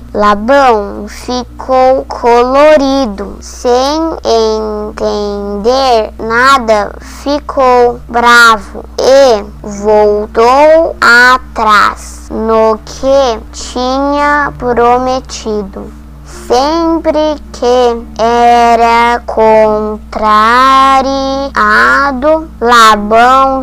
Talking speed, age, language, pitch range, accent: 50 wpm, 20-39, Portuguese, 215-280 Hz, Brazilian